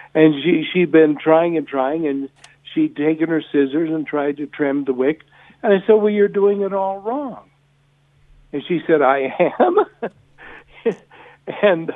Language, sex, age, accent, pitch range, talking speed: English, male, 60-79, American, 145-195 Hz, 160 wpm